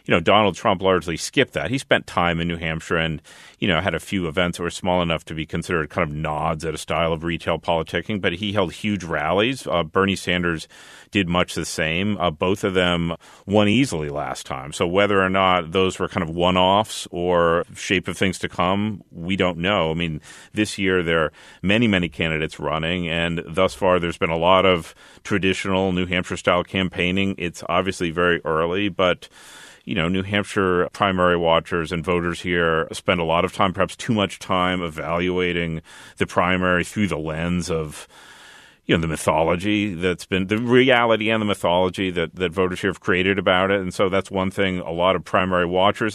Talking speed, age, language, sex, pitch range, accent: 205 wpm, 40-59, English, male, 85-95 Hz, American